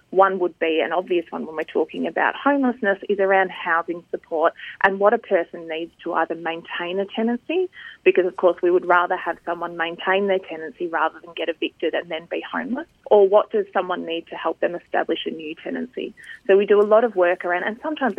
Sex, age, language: female, 20-39, English